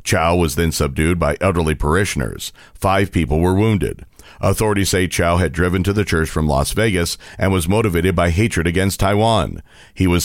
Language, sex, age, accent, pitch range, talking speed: English, male, 40-59, American, 85-110 Hz, 180 wpm